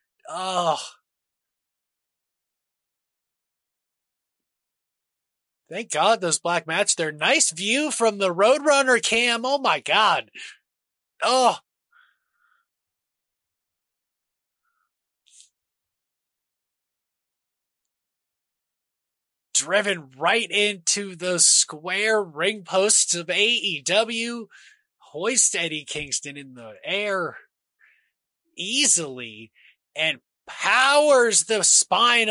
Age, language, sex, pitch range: 20-39, English, male, 160-230 Hz